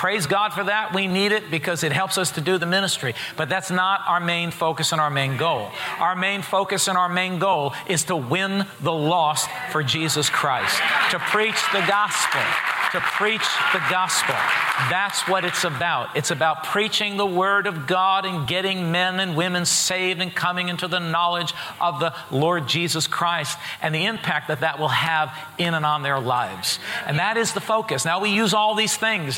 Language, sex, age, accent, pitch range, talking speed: English, male, 50-69, American, 160-195 Hz, 200 wpm